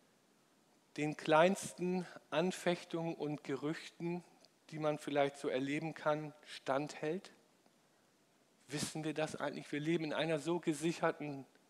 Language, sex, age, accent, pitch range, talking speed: German, male, 50-69, German, 140-180 Hz, 115 wpm